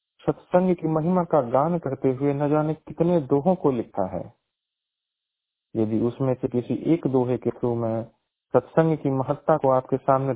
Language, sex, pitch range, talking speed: Hindi, male, 115-150 Hz, 140 wpm